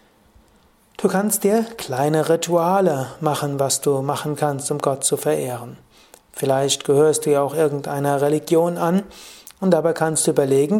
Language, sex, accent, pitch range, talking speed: German, male, German, 145-180 Hz, 150 wpm